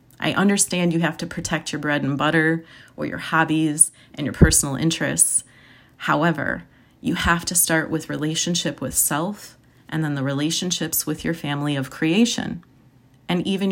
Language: English